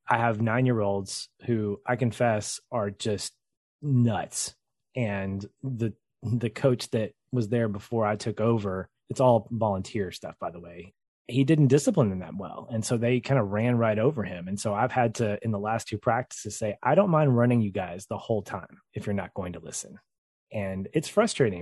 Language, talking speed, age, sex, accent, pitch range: English, 195 wpm, 30-49, male, American, 105-130 Hz